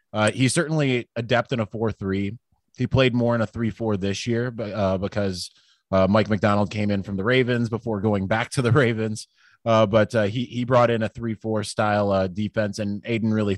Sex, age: male, 20-39